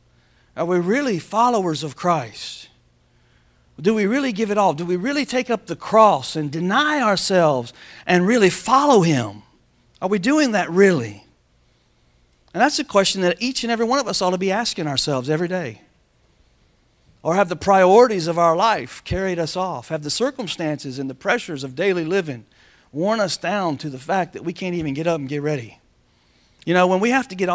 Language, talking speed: English, 195 wpm